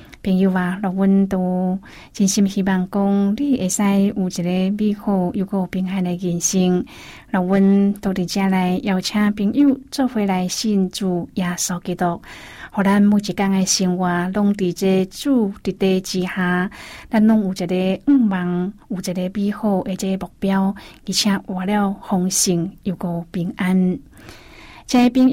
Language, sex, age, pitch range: Chinese, female, 20-39, 185-230 Hz